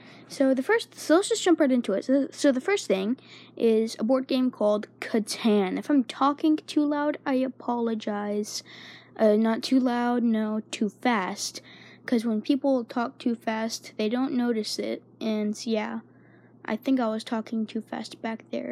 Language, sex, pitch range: English, female, 210-255 Hz